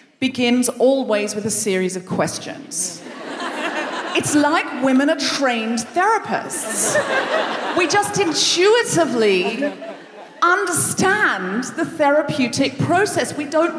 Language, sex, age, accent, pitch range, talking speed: English, female, 40-59, British, 235-330 Hz, 95 wpm